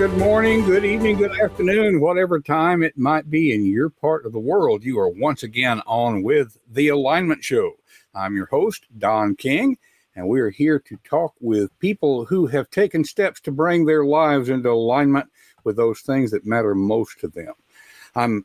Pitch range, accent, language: 105-160 Hz, American, English